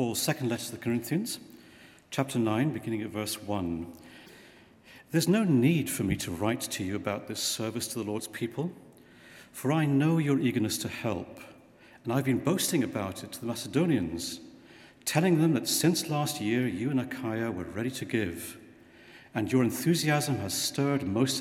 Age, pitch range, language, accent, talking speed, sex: 50-69, 110-140 Hz, English, British, 175 wpm, male